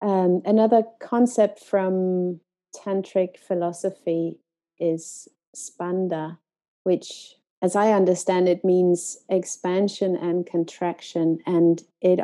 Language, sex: Danish, female